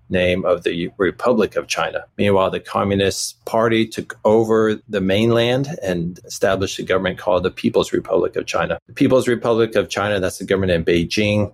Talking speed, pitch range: 175 wpm, 90-115 Hz